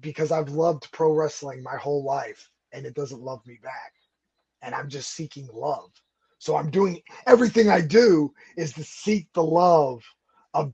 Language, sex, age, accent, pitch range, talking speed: English, male, 20-39, American, 150-190 Hz, 175 wpm